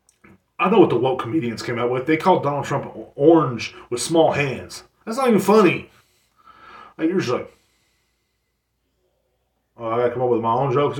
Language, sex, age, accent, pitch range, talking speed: English, male, 30-49, American, 115-185 Hz, 180 wpm